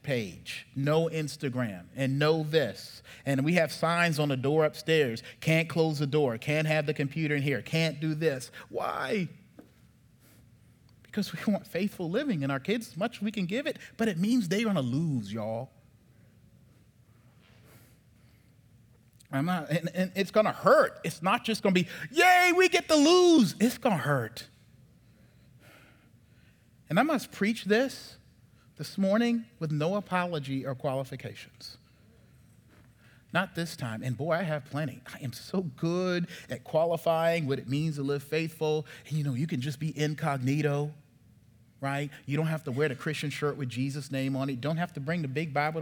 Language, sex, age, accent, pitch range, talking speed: English, male, 30-49, American, 125-165 Hz, 175 wpm